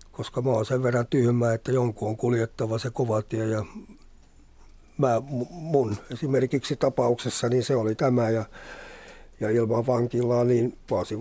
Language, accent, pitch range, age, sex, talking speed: Finnish, native, 110-125 Hz, 60-79, male, 150 wpm